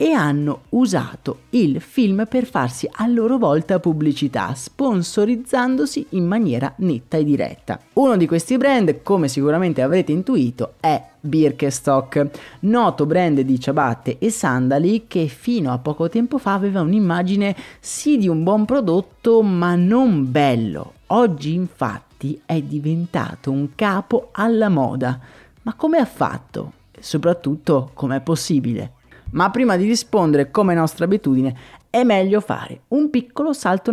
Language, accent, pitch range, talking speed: Italian, native, 140-220 Hz, 140 wpm